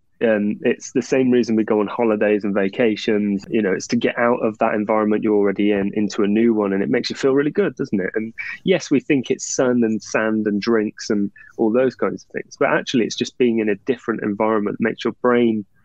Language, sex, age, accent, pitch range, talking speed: English, male, 20-39, British, 105-120 Hz, 245 wpm